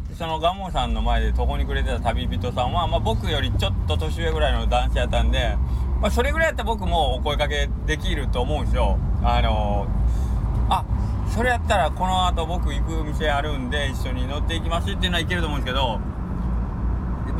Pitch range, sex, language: 85-110 Hz, male, Japanese